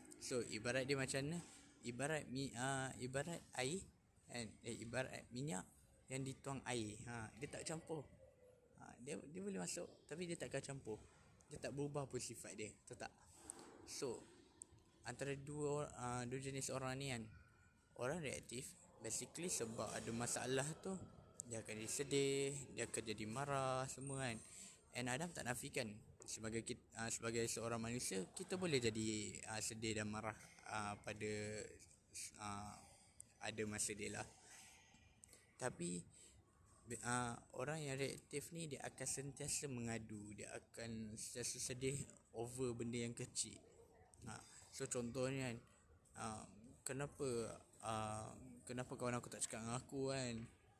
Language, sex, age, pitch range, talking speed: Malay, male, 20-39, 110-135 Hz, 145 wpm